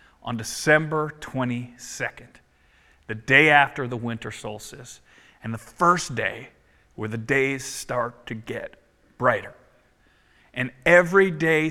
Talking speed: 120 wpm